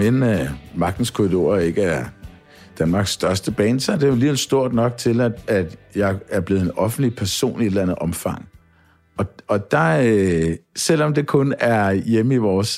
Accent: native